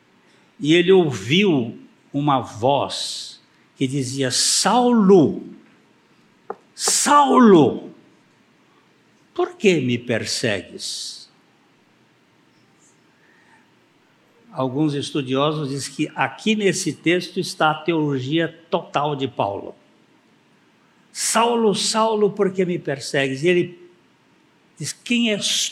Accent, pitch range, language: Brazilian, 150-215 Hz, Portuguese